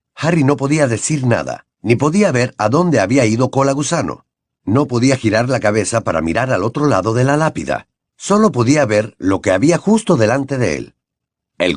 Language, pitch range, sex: Spanish, 110-150 Hz, male